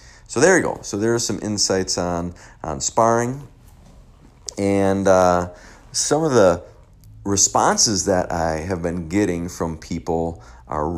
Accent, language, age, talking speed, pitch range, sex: American, English, 40-59, 140 wpm, 80-105 Hz, male